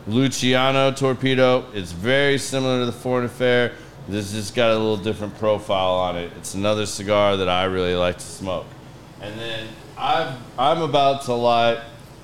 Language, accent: English, American